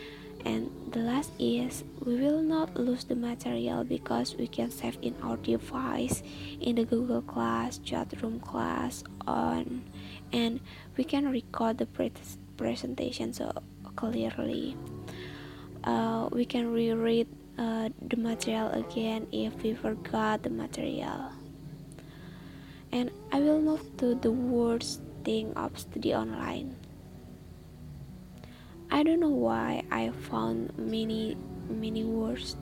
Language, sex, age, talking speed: Indonesian, female, 20-39, 125 wpm